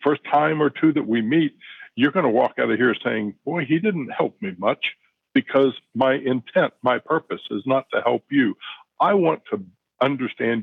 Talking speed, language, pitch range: 200 wpm, English, 110-145 Hz